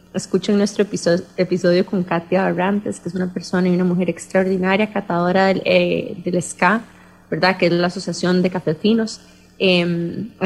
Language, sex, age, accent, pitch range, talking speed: English, female, 20-39, Colombian, 180-215 Hz, 165 wpm